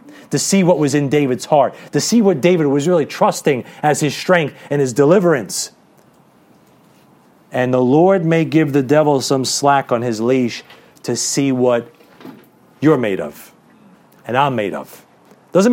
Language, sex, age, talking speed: English, male, 30-49, 165 wpm